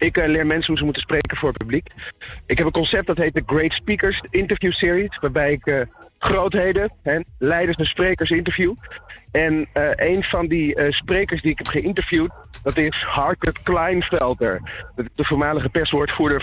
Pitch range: 135-165 Hz